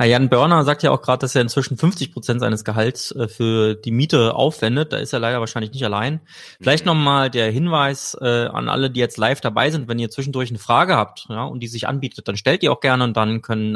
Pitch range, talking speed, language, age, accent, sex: 115-140 Hz, 245 wpm, German, 20-39, German, male